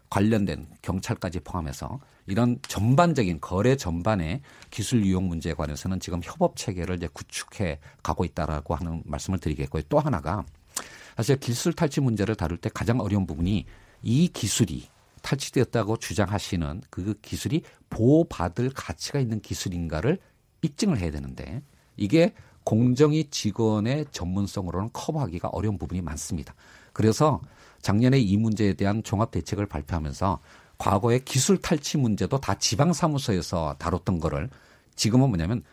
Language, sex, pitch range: Korean, male, 90-135 Hz